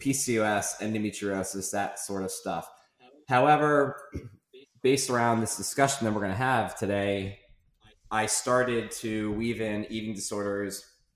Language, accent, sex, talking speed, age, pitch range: English, American, male, 130 wpm, 20-39, 100-110 Hz